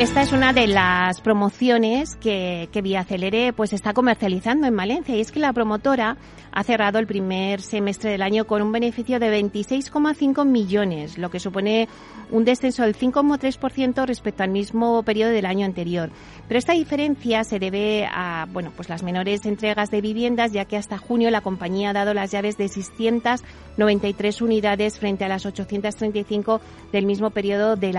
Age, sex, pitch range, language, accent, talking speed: 30-49, female, 195-230 Hz, Spanish, Spanish, 175 wpm